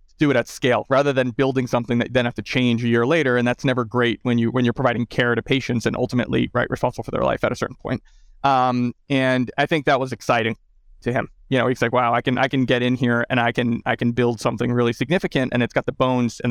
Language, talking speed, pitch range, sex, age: English, 275 wpm, 120-140 Hz, male, 20-39